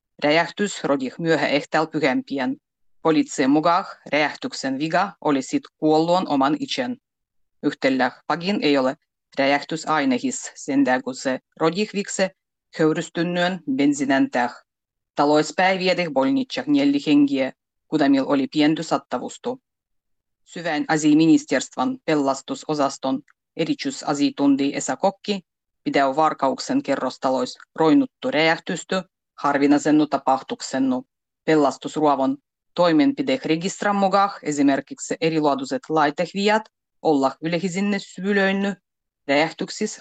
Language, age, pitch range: Finnish, 30-49, 135-185 Hz